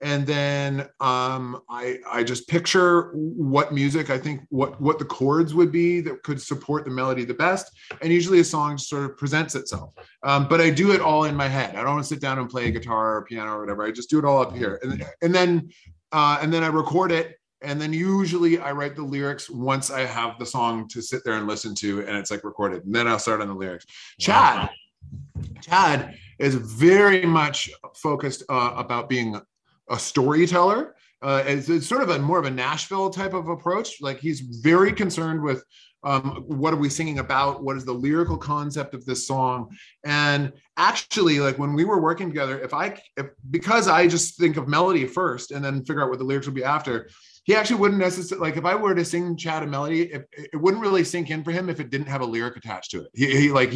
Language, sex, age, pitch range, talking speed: English, male, 30-49, 130-165 Hz, 225 wpm